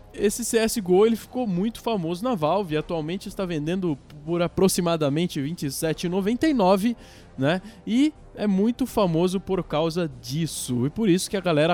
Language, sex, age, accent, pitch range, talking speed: Portuguese, male, 20-39, Brazilian, 150-220 Hz, 150 wpm